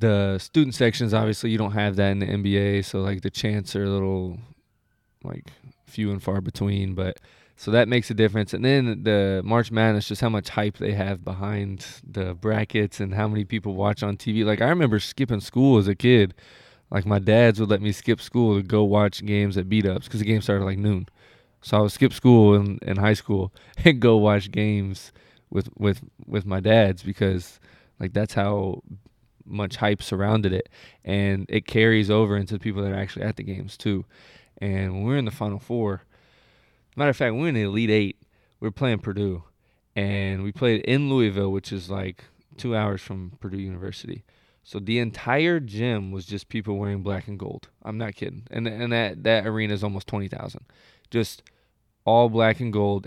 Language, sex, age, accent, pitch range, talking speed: English, male, 20-39, American, 100-115 Hz, 205 wpm